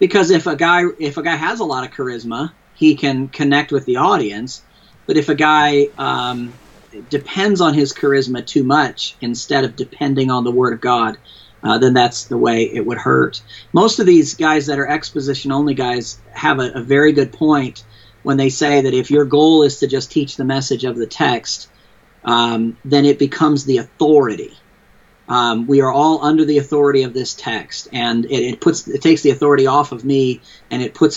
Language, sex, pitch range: English, male, 125-150 Hz